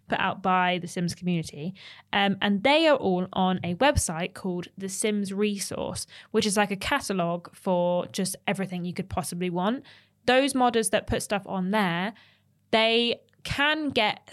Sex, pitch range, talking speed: female, 175-215 Hz, 170 wpm